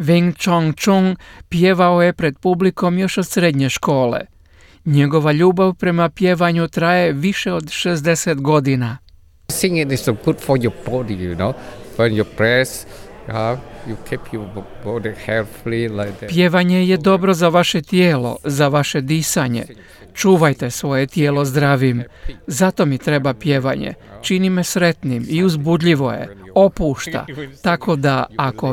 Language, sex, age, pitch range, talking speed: Croatian, male, 50-69, 135-175 Hz, 120 wpm